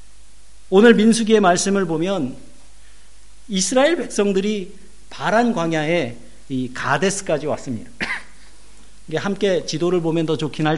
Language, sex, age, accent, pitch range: Korean, male, 50-69, native, 160-240 Hz